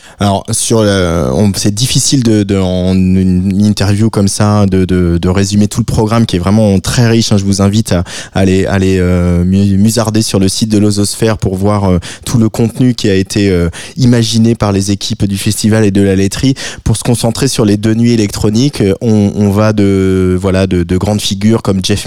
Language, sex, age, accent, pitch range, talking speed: French, male, 20-39, French, 95-115 Hz, 210 wpm